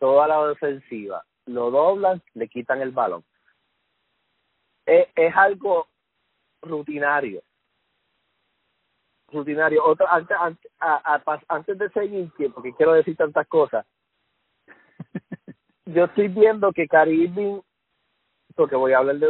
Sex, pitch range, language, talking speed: male, 155-205 Hz, Spanish, 115 wpm